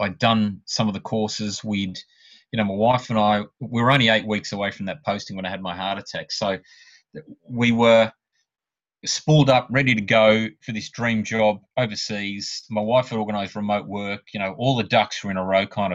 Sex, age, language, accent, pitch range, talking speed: male, 30-49, English, Australian, 95-120 Hz, 215 wpm